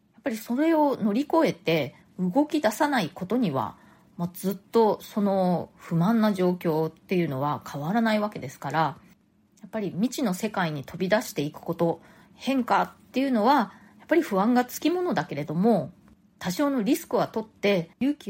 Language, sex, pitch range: Japanese, female, 170-240 Hz